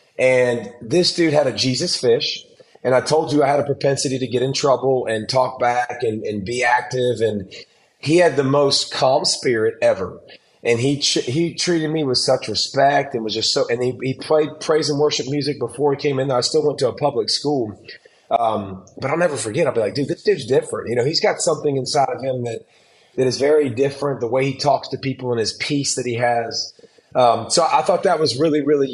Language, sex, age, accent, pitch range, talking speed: English, male, 30-49, American, 125-150 Hz, 230 wpm